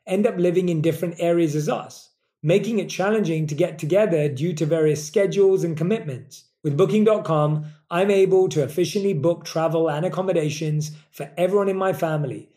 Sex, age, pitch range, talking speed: male, 30-49, 155-195 Hz, 165 wpm